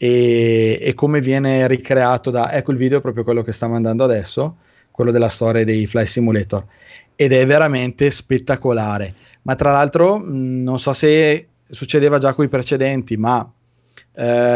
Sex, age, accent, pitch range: male, 20-39, native, 115-135 Hz